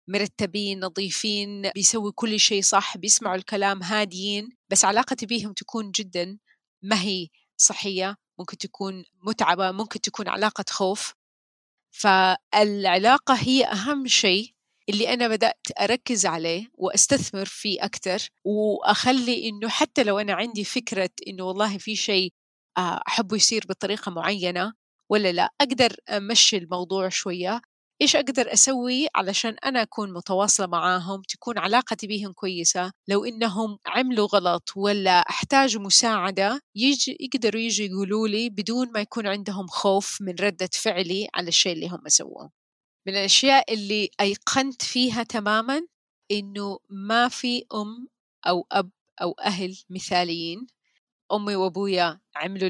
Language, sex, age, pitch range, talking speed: Arabic, female, 30-49, 190-225 Hz, 130 wpm